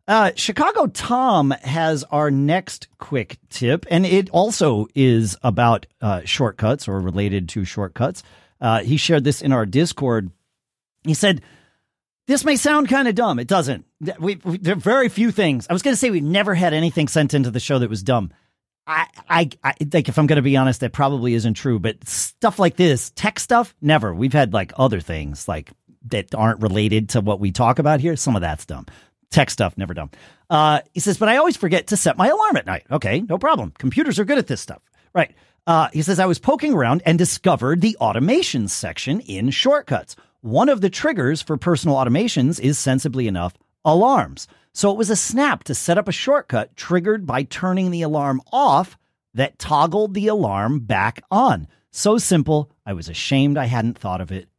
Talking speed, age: 200 wpm, 40-59